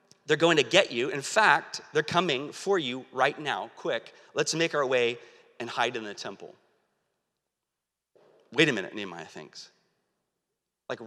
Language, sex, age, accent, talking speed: English, male, 30-49, American, 155 wpm